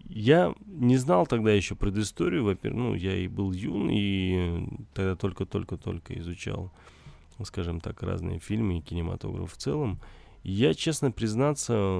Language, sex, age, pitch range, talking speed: Russian, male, 20-39, 90-120 Hz, 140 wpm